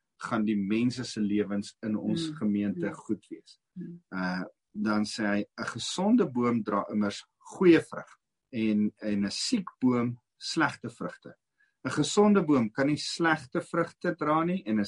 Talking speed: 140 wpm